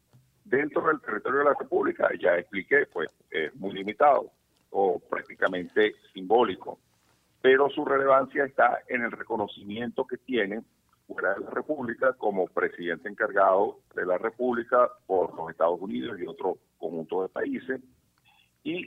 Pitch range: 100-140 Hz